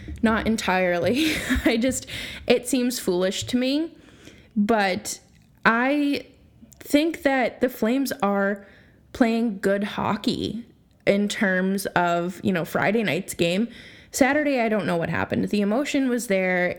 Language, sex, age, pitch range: English, female, 20-39, 185-245 Hz